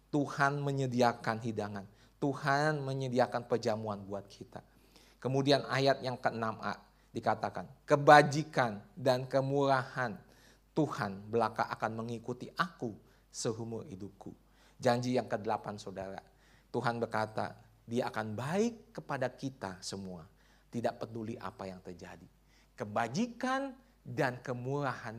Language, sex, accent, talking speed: Indonesian, male, native, 105 wpm